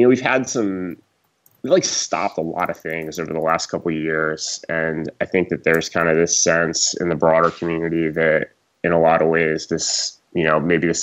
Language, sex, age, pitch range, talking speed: English, male, 20-39, 80-90 Hz, 230 wpm